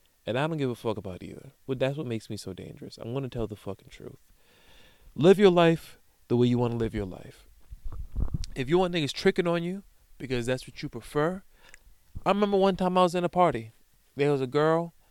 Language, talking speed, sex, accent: English, 230 wpm, male, American